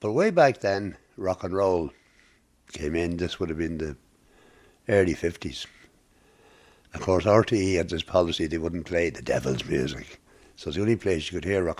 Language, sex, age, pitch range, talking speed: English, male, 60-79, 85-100 Hz, 185 wpm